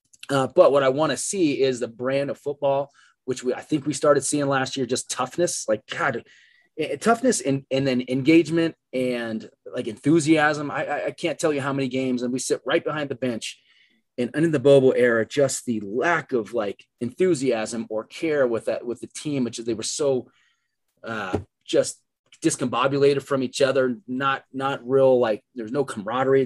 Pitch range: 120-140 Hz